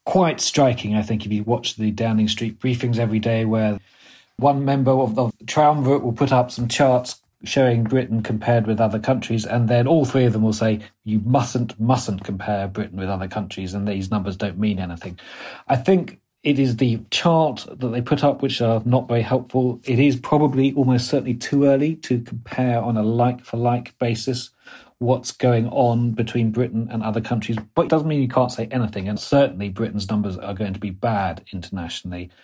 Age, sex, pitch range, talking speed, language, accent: 40-59, male, 105-130 Hz, 195 wpm, English, British